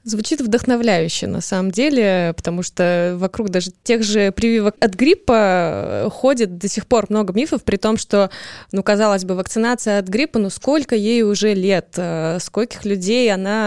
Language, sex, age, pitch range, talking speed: Russian, female, 20-39, 185-235 Hz, 160 wpm